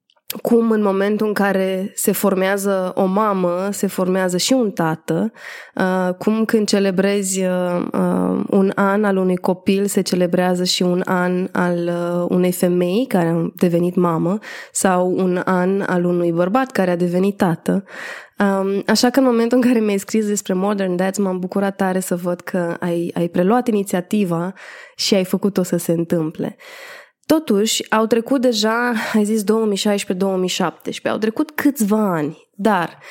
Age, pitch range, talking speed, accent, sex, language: 20-39, 180-220 Hz, 150 wpm, native, female, Romanian